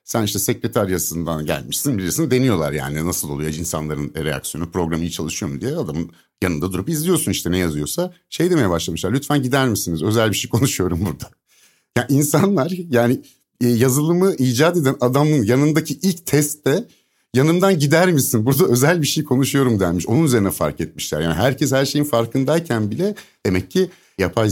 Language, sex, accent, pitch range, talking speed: Turkish, male, native, 90-150 Hz, 165 wpm